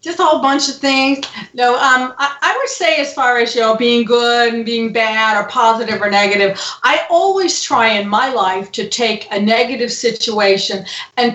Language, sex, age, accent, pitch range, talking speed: English, female, 40-59, American, 205-255 Hz, 200 wpm